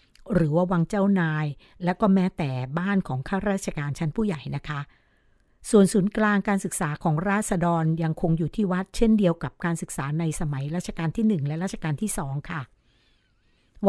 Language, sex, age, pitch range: Thai, female, 60-79, 160-205 Hz